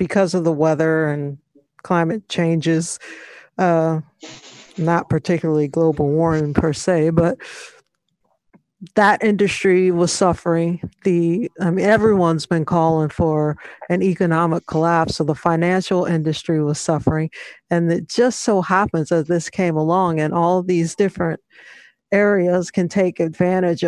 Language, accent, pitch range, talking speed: English, American, 170-200 Hz, 130 wpm